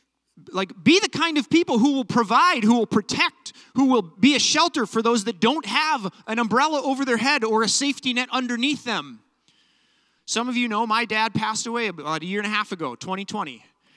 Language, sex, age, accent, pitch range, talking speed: English, male, 30-49, American, 205-275 Hz, 210 wpm